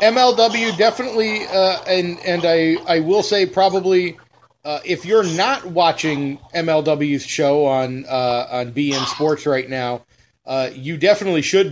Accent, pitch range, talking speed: American, 135-175 Hz, 145 wpm